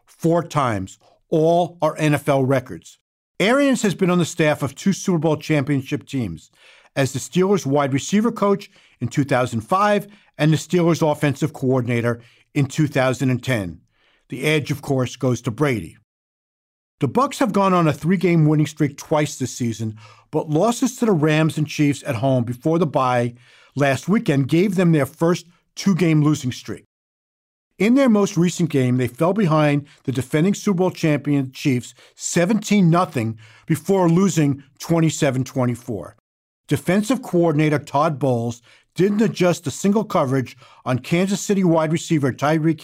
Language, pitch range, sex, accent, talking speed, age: English, 130-180 Hz, male, American, 150 wpm, 50-69